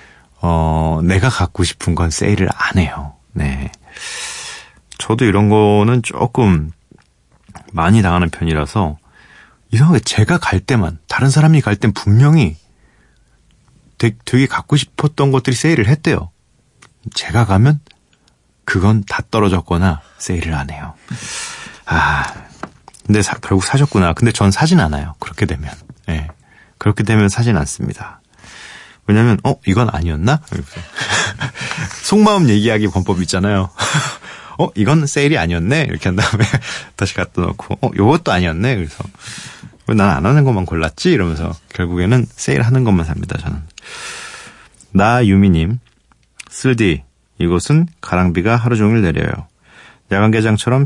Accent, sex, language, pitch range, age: native, male, Korean, 85-120 Hz, 30-49